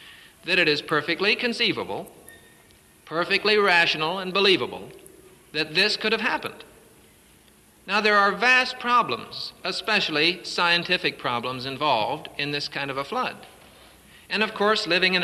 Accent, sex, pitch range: American, male, 155-210 Hz